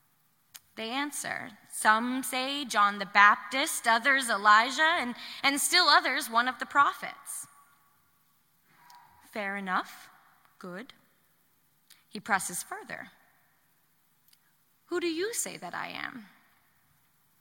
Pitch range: 235-315 Hz